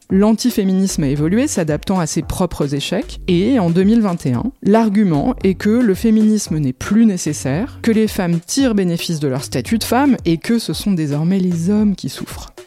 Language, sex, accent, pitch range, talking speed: French, female, French, 170-220 Hz, 180 wpm